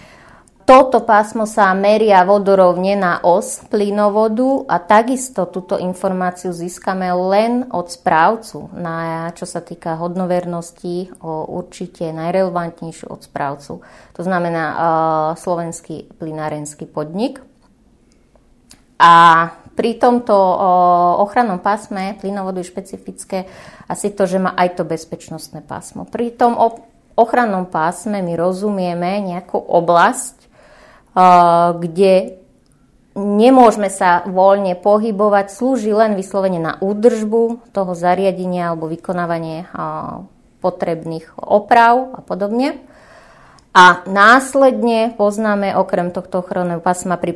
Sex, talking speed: female, 105 wpm